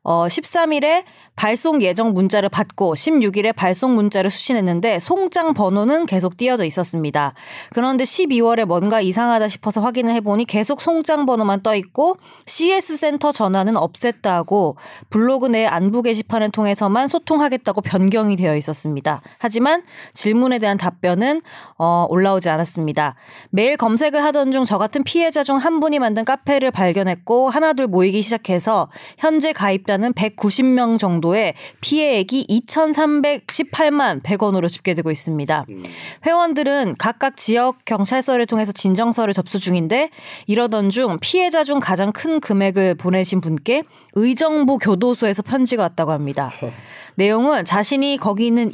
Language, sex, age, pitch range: Korean, female, 20-39, 190-275 Hz